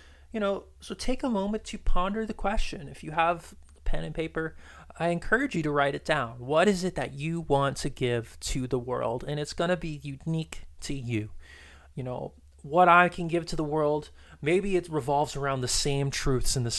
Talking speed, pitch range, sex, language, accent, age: 215 wpm, 115-155 Hz, male, English, American, 20-39